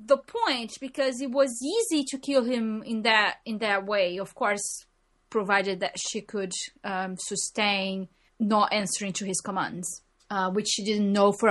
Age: 20-39